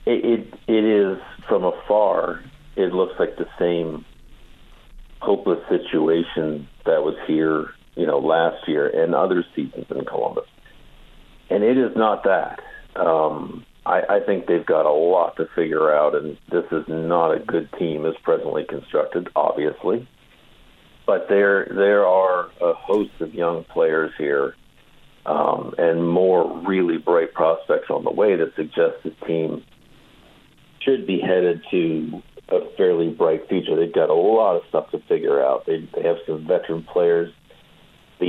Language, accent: English, American